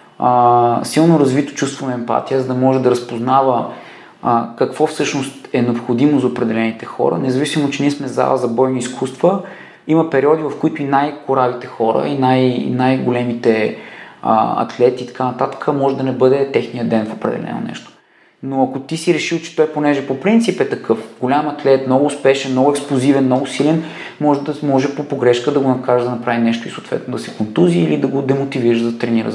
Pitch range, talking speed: 115-140 Hz, 190 wpm